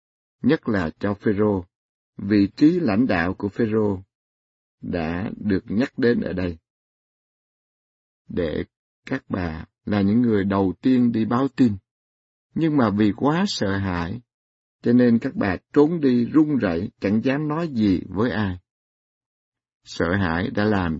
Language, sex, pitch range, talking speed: Vietnamese, male, 95-130 Hz, 145 wpm